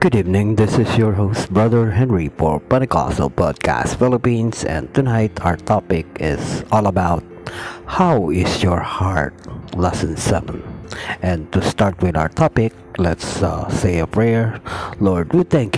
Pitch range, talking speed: 90-125 Hz, 150 wpm